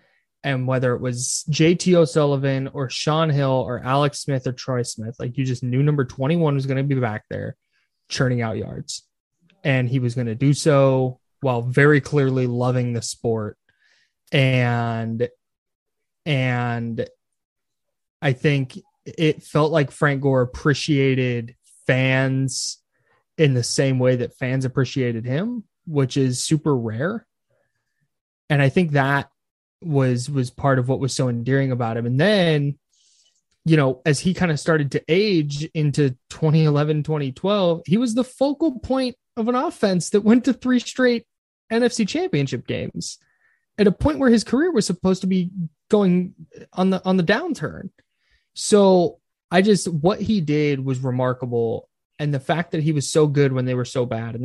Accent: American